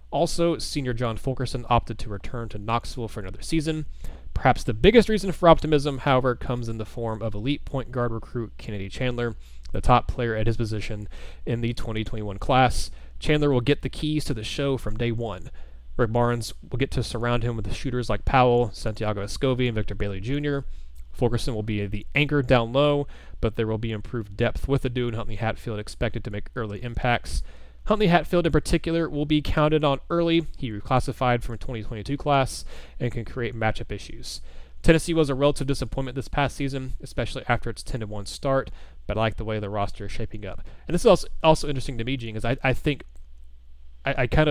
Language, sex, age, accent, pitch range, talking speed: English, male, 20-39, American, 105-135 Hz, 200 wpm